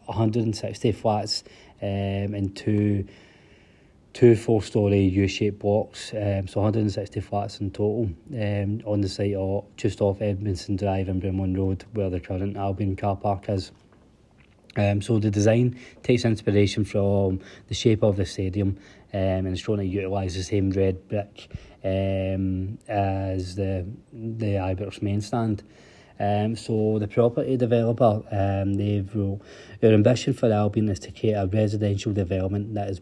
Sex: male